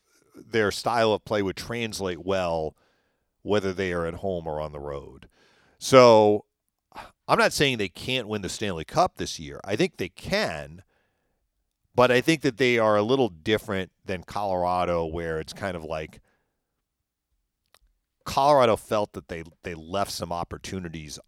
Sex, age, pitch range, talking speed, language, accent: male, 40-59, 80-100 Hz, 160 wpm, English, American